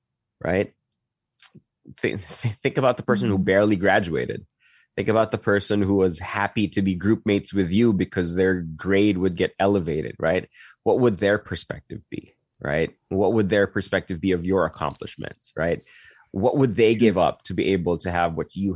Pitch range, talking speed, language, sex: 90-105 Hz, 180 wpm, English, male